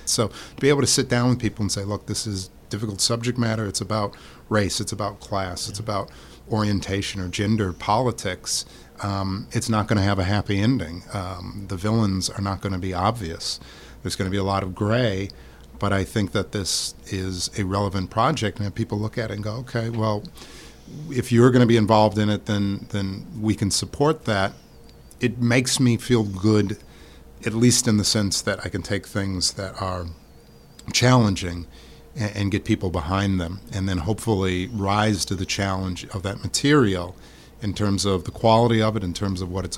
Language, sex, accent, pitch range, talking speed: English, male, American, 95-110 Hz, 200 wpm